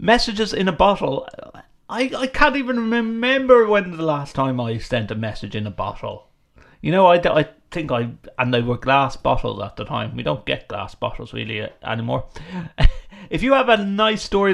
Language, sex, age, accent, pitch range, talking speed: English, male, 30-49, British, 105-155 Hz, 195 wpm